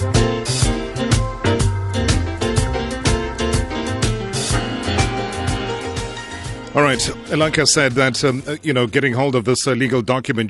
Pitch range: 110-125 Hz